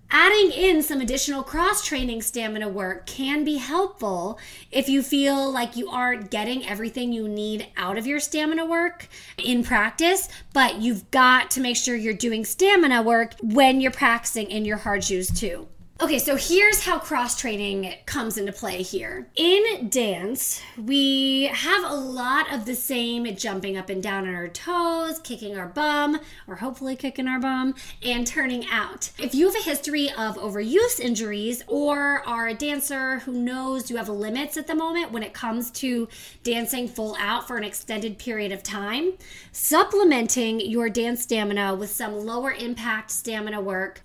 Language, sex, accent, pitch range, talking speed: English, female, American, 220-280 Hz, 170 wpm